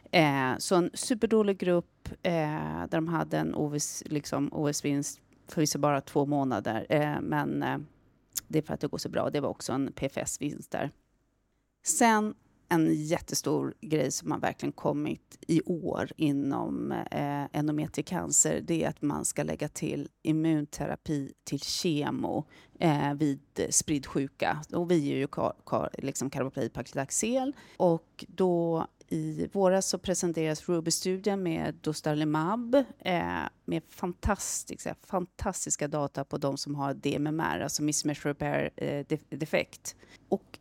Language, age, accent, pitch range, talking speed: Swedish, 30-49, native, 145-185 Hz, 130 wpm